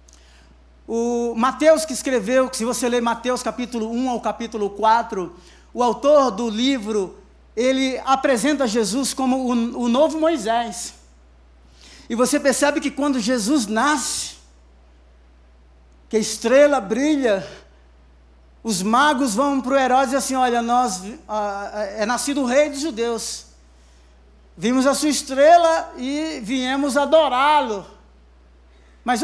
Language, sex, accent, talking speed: Portuguese, male, Brazilian, 130 wpm